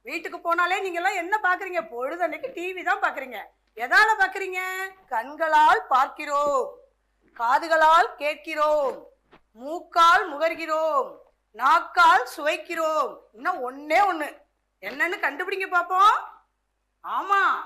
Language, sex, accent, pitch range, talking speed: Tamil, female, native, 295-400 Hz, 35 wpm